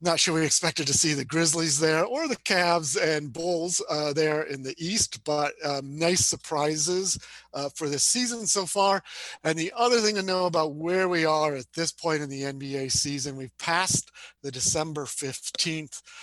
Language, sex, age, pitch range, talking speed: English, male, 40-59, 145-195 Hz, 190 wpm